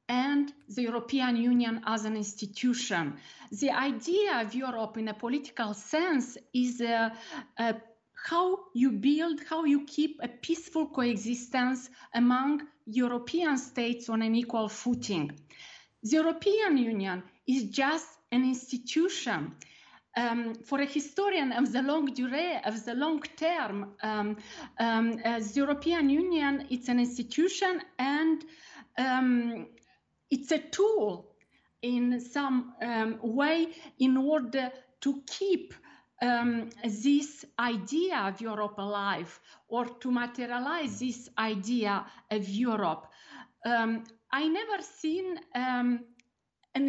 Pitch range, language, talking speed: 235-300 Hz, English, 120 wpm